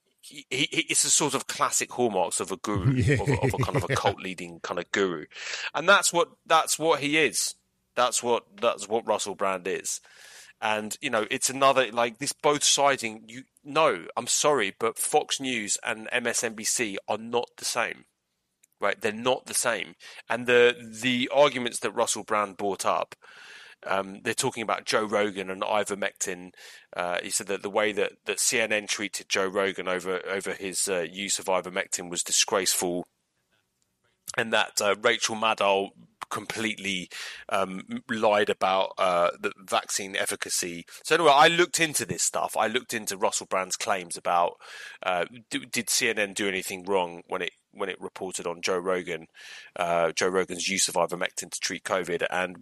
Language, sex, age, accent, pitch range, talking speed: English, male, 30-49, British, 95-130 Hz, 170 wpm